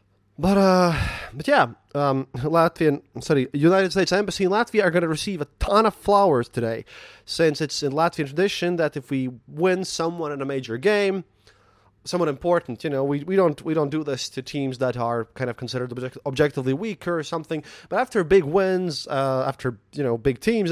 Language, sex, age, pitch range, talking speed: English, male, 30-49, 125-170 Hz, 195 wpm